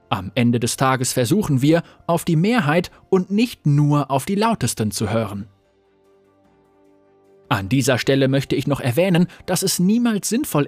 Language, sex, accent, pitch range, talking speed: German, male, German, 125-185 Hz, 155 wpm